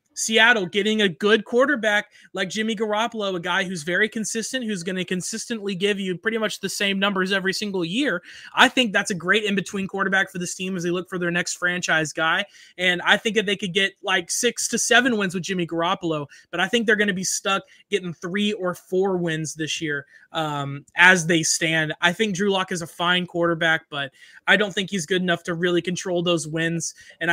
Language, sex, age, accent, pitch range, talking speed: English, male, 20-39, American, 175-220 Hz, 220 wpm